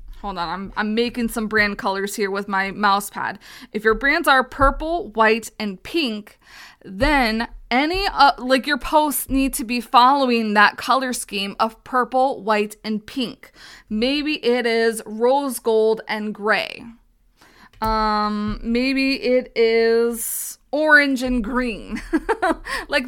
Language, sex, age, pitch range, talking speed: English, female, 20-39, 210-260 Hz, 140 wpm